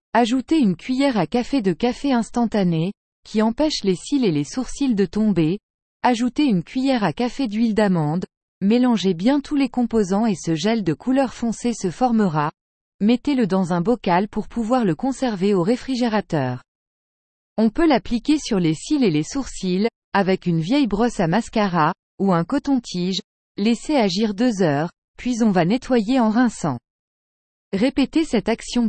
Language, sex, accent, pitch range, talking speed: English, female, French, 185-250 Hz, 160 wpm